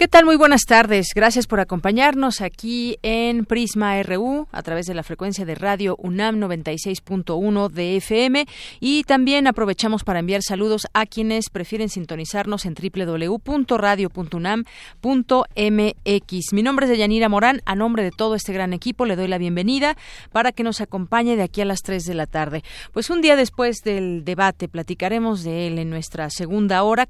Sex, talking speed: female, 170 wpm